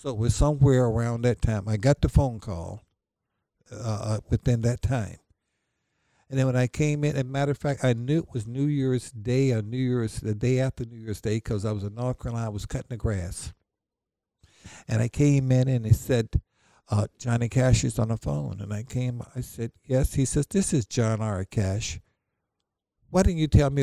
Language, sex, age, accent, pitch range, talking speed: English, male, 60-79, American, 105-135 Hz, 215 wpm